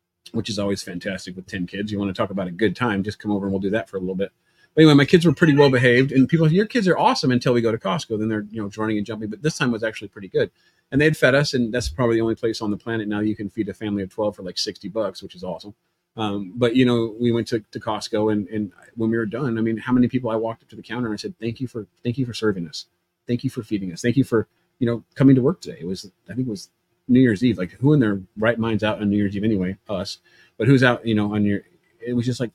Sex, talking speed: male, 315 wpm